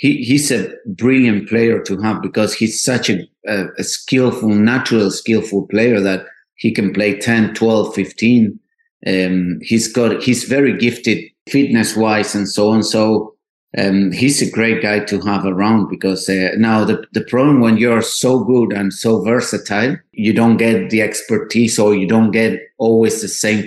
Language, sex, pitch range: English, male, 100-115 Hz